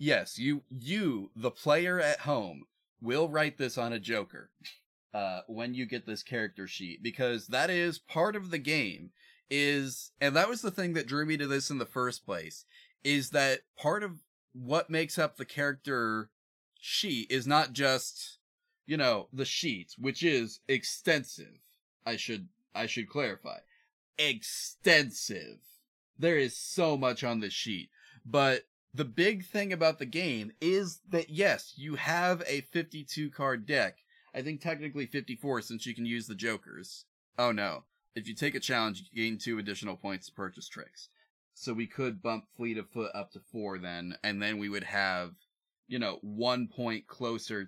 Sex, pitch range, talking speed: male, 115-150 Hz, 170 wpm